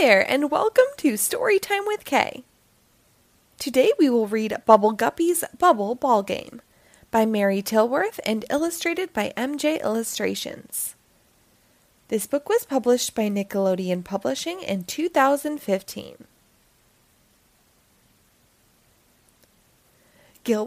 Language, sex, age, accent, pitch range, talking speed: English, female, 20-39, American, 205-300 Hz, 100 wpm